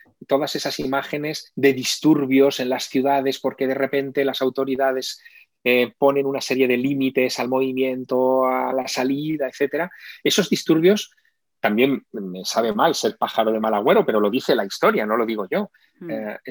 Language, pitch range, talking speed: Spanish, 130-150 Hz, 165 wpm